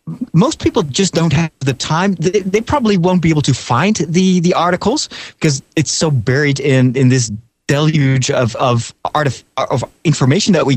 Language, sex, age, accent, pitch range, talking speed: English, male, 30-49, American, 130-180 Hz, 190 wpm